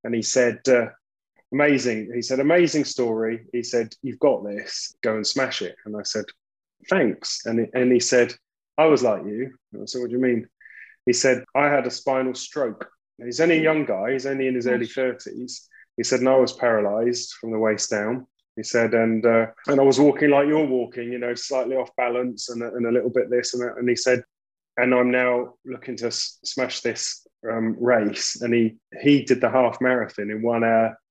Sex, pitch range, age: male, 115-135 Hz, 20-39